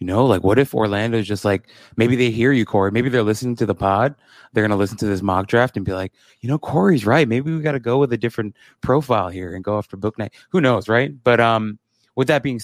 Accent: American